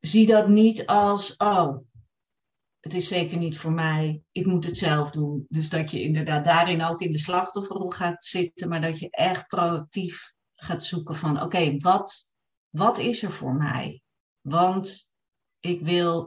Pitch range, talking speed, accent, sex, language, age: 155-185 Hz, 165 wpm, Dutch, female, Dutch, 40-59